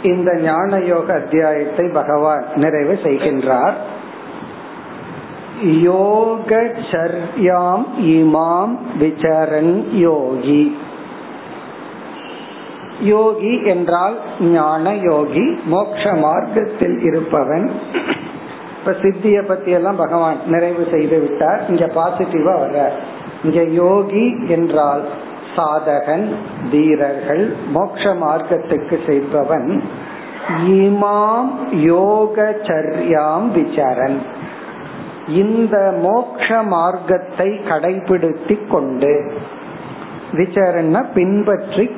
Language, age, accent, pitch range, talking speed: Tamil, 50-69, native, 155-200 Hz, 40 wpm